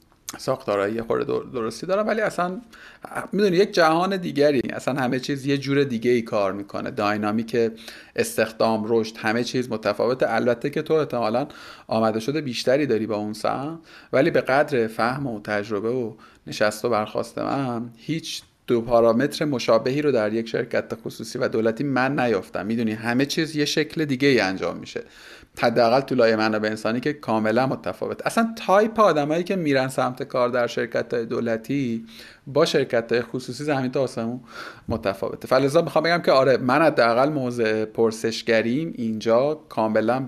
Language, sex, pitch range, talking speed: Persian, male, 110-145 Hz, 160 wpm